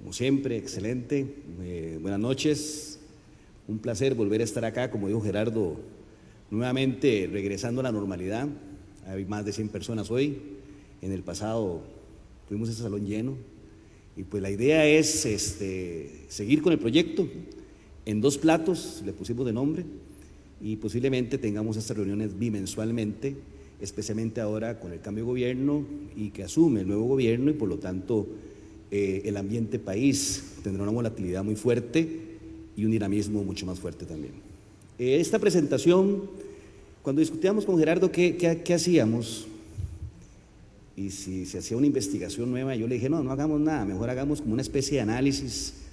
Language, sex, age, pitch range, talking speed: Spanish, male, 40-59, 100-140 Hz, 160 wpm